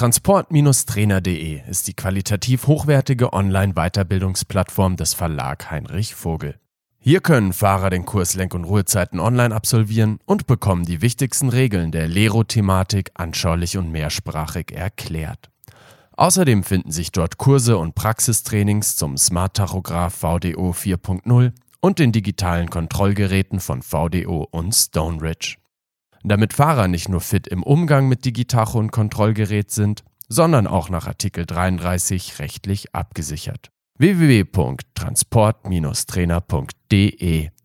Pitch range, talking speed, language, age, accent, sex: 85-115 Hz, 115 wpm, German, 40-59, German, male